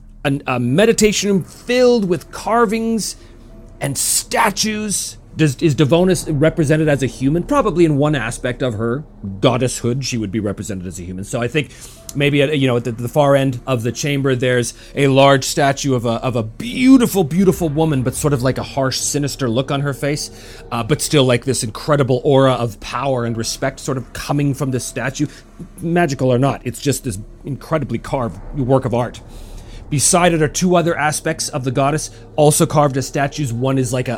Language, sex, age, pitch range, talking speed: English, male, 30-49, 120-165 Hz, 195 wpm